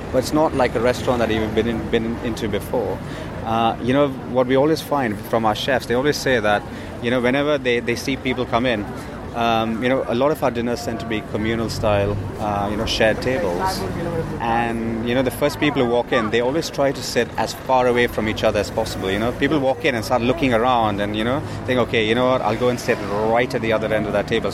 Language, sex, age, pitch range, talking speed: English, male, 30-49, 110-140 Hz, 250 wpm